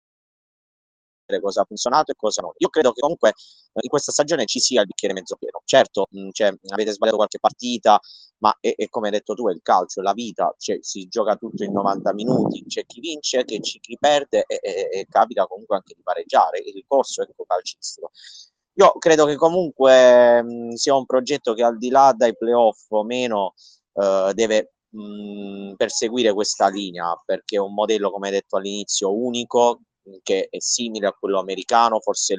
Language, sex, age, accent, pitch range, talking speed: Italian, male, 30-49, native, 110-175 Hz, 195 wpm